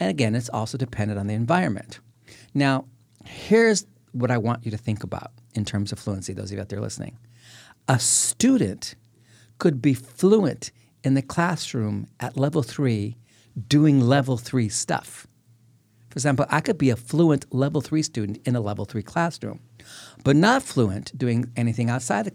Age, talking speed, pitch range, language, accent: 50-69, 170 wpm, 110-140 Hz, English, American